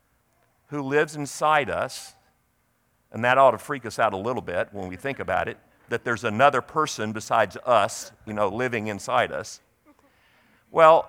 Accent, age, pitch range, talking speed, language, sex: American, 50-69, 135-185 Hz, 170 wpm, English, male